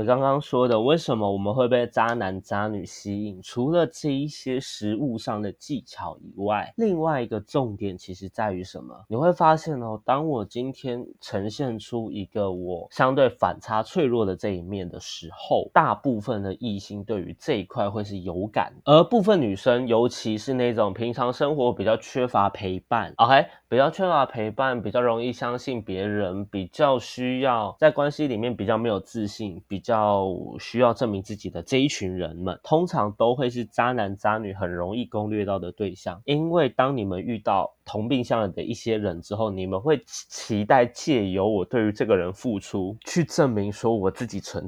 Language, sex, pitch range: Chinese, male, 100-130 Hz